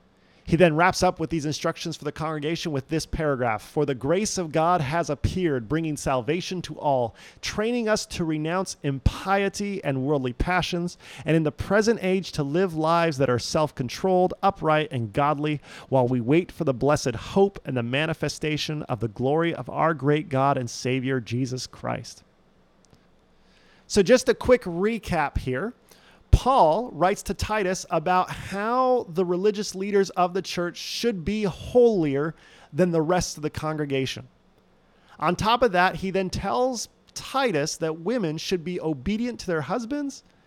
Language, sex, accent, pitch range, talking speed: English, male, American, 145-190 Hz, 165 wpm